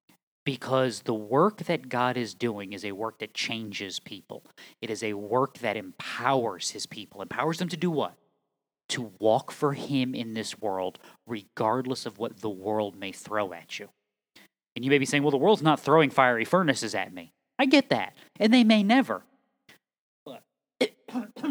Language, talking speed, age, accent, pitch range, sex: English, 180 wpm, 30-49, American, 115-190 Hz, male